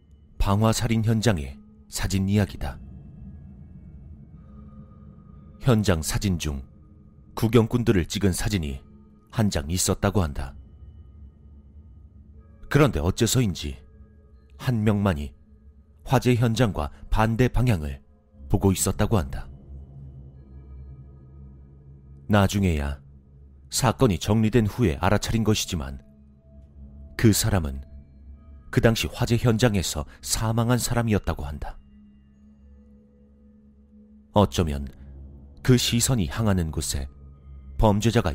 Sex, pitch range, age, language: male, 70-100 Hz, 40-59, Korean